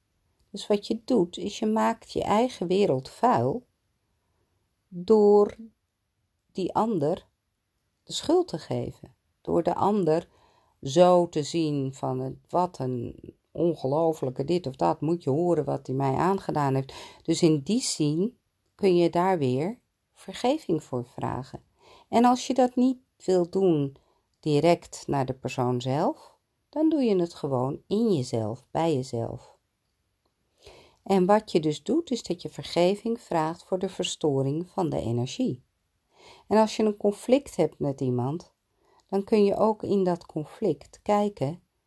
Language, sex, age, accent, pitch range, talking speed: Dutch, female, 50-69, Dutch, 135-195 Hz, 150 wpm